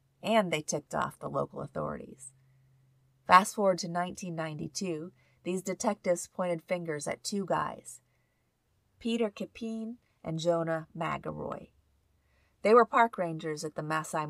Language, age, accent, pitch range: English, 30-49, American, 155-190 Hz